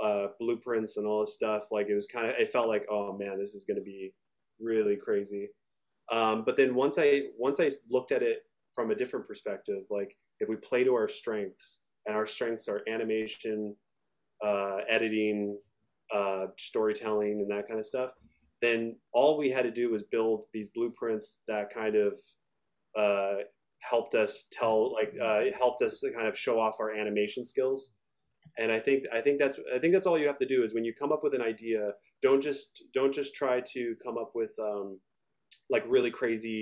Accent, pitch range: American, 105-135 Hz